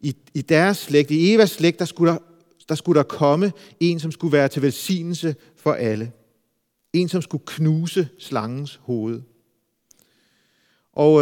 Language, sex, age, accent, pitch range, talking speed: Danish, male, 40-59, native, 140-185 Hz, 150 wpm